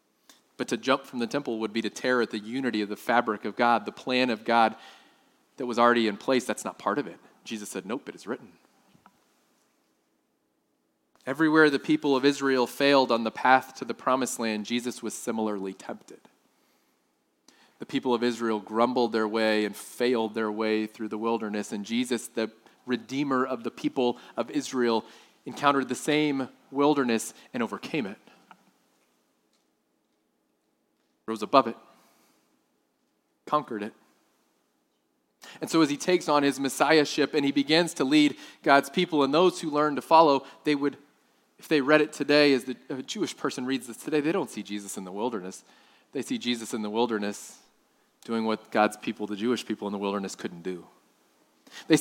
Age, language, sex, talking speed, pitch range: 30-49, English, male, 175 wpm, 110-140 Hz